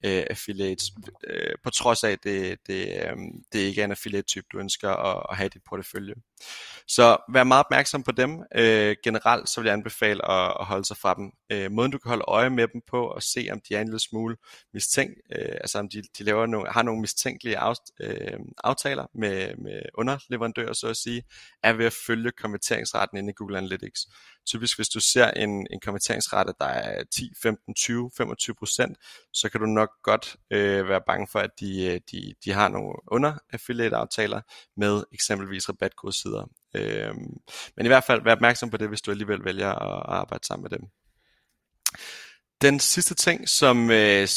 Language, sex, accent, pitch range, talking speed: Danish, male, native, 100-120 Hz, 160 wpm